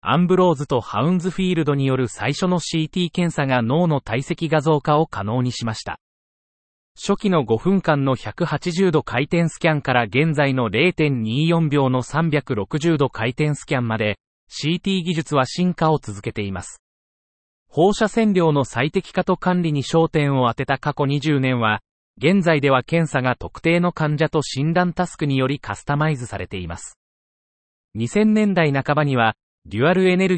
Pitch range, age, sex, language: 125-170 Hz, 30-49, male, Japanese